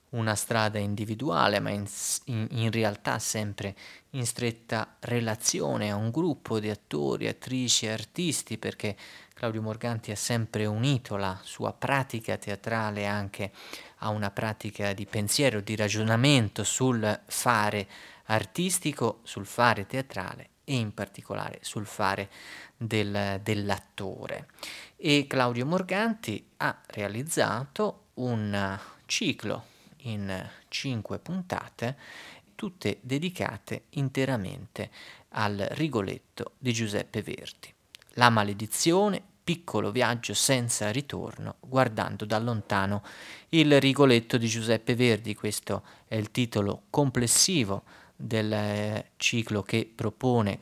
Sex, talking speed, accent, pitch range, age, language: male, 105 wpm, native, 105-130 Hz, 30-49, Italian